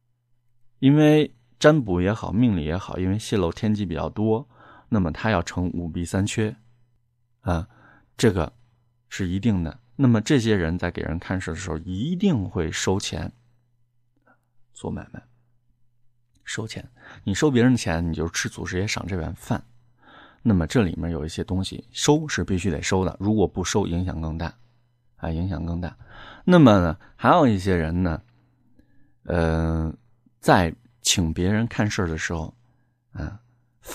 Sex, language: male, Chinese